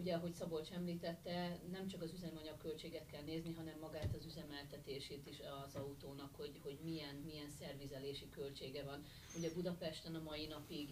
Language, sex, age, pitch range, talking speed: Hungarian, female, 40-59, 145-180 Hz, 165 wpm